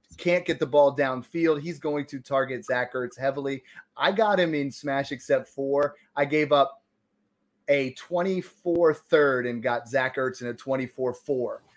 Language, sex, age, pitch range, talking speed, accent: English, male, 30-49, 130-160 Hz, 165 wpm, American